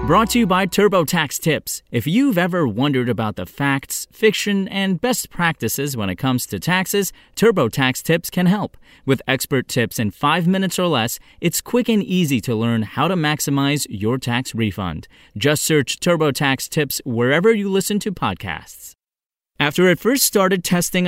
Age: 30-49